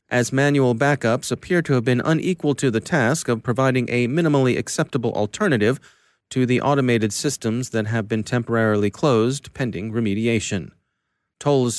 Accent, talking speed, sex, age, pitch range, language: American, 150 wpm, male, 30-49, 115-145 Hz, English